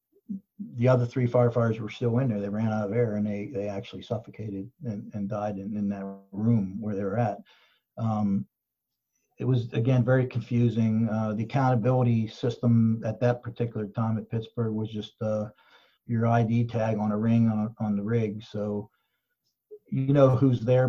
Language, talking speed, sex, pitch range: English, 180 wpm, male, 110-125 Hz